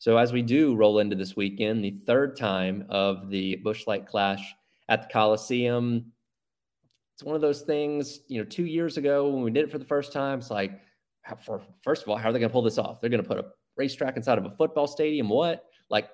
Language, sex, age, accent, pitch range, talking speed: English, male, 30-49, American, 110-140 Hz, 230 wpm